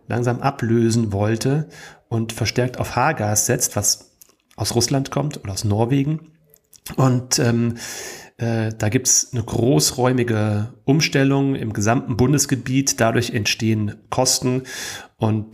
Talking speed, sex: 120 wpm, male